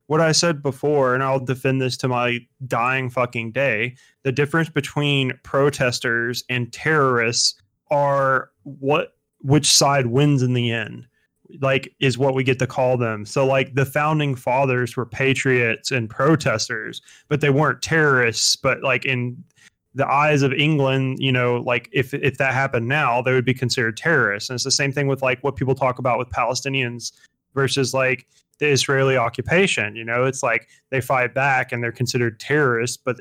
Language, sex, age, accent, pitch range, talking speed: English, male, 20-39, American, 120-140 Hz, 175 wpm